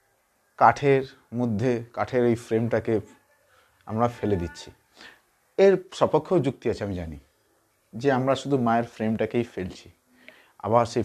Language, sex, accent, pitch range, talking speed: English, male, Indian, 95-120 Hz, 120 wpm